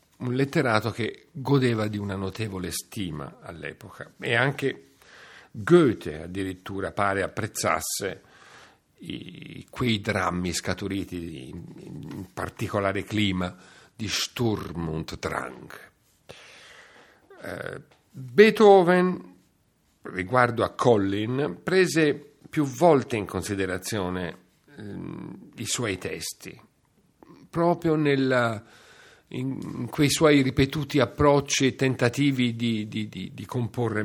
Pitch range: 95-130 Hz